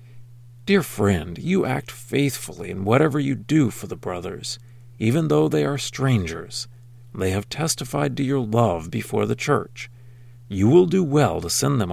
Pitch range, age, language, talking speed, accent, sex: 105-135 Hz, 50-69, English, 165 wpm, American, male